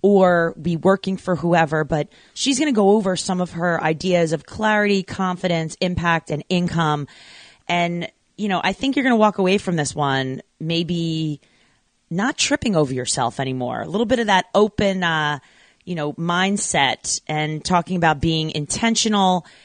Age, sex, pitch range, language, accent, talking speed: 30-49, female, 150-190 Hz, English, American, 170 wpm